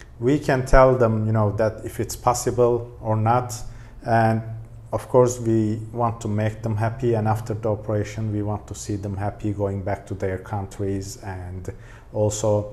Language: Turkish